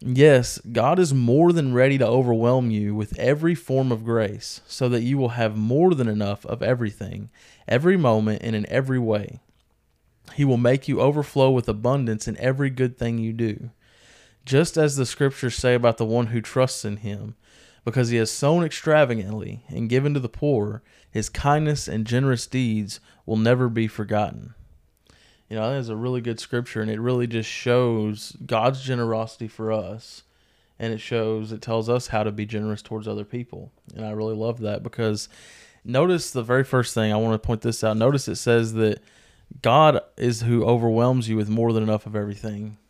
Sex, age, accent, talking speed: male, 20-39, American, 190 wpm